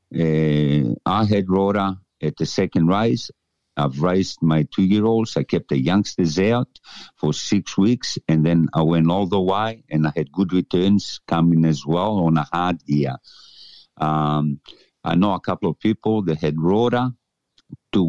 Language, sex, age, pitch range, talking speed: English, male, 50-69, 80-100 Hz, 165 wpm